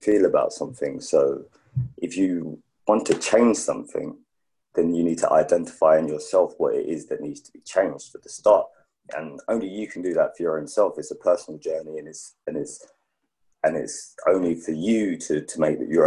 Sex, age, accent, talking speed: male, 30-49, British, 205 wpm